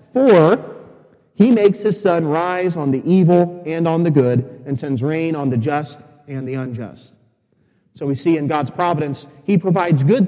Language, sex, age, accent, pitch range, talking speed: English, male, 30-49, American, 135-165 Hz, 180 wpm